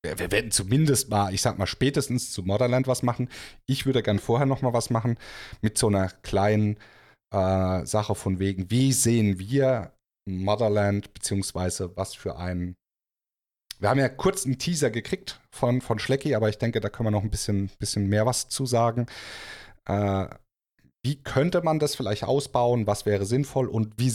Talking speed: 175 wpm